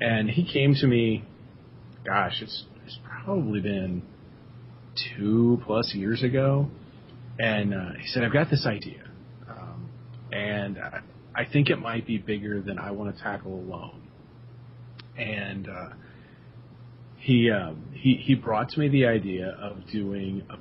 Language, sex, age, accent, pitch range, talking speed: English, male, 40-59, American, 100-120 Hz, 145 wpm